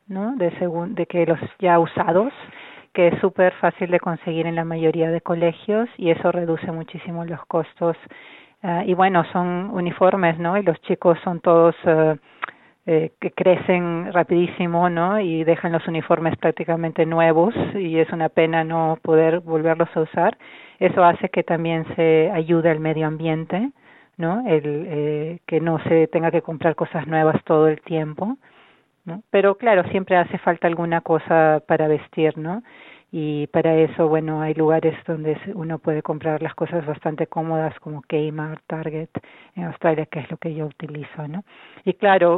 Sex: female